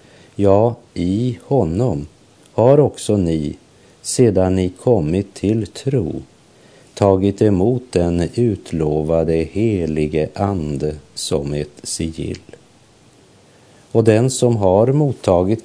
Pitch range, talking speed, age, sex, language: 85-110 Hz, 95 wpm, 50-69, male, Swedish